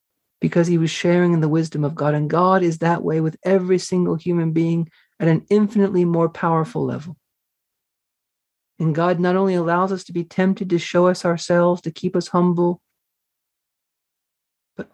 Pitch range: 165-200 Hz